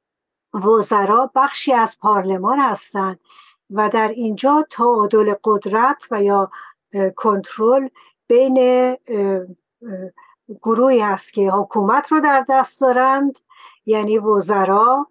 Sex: female